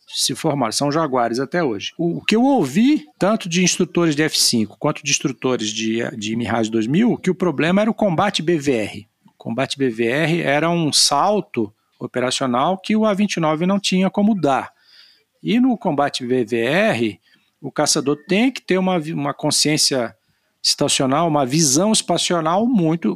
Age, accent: 50-69, Brazilian